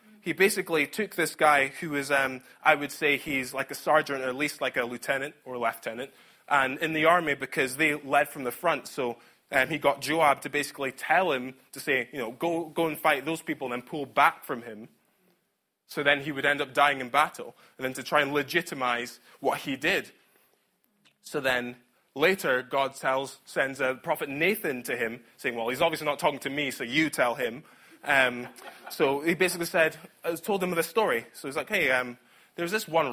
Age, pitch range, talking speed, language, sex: 20-39, 130-165 Hz, 215 wpm, English, male